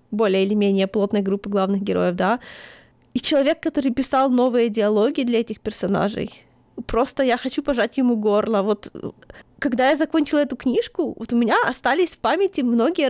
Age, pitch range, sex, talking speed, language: 20-39, 225-270 Hz, female, 165 wpm, Ukrainian